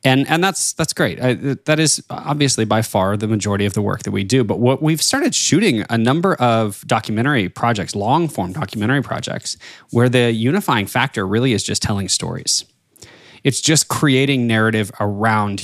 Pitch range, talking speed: 110-135 Hz, 175 wpm